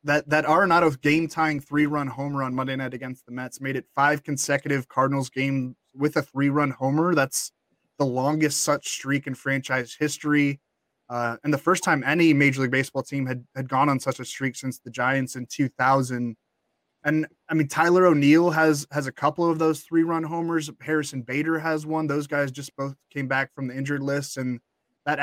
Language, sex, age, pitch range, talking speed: English, male, 20-39, 130-155 Hz, 195 wpm